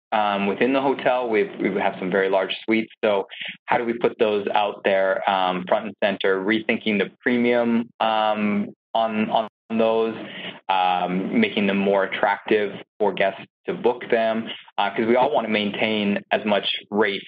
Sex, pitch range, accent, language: male, 95-115 Hz, American, English